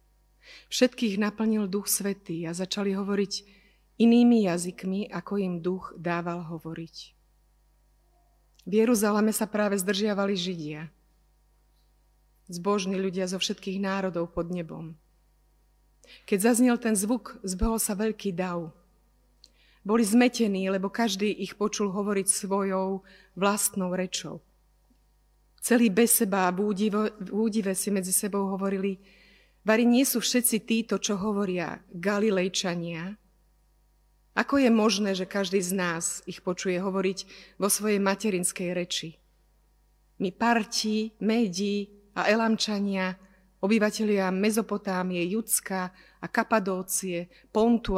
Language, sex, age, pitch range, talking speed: Slovak, female, 30-49, 185-215 Hz, 110 wpm